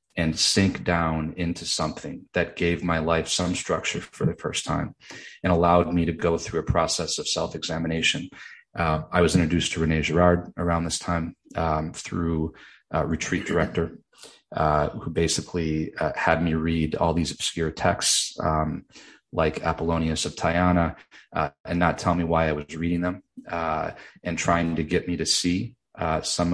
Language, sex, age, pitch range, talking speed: English, male, 30-49, 80-90 Hz, 170 wpm